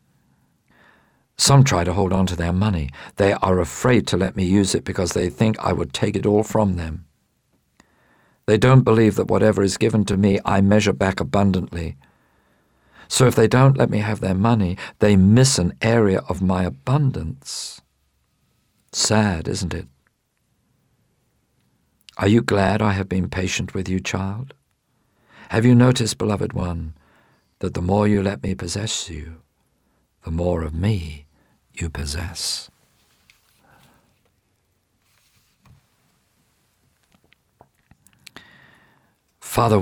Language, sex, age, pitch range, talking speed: English, male, 50-69, 90-110 Hz, 135 wpm